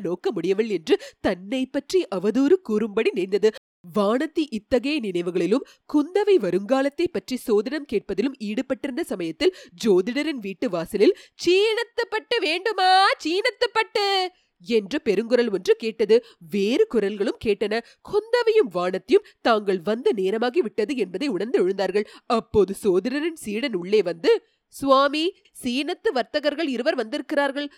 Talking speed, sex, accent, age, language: 75 wpm, female, native, 30-49, Tamil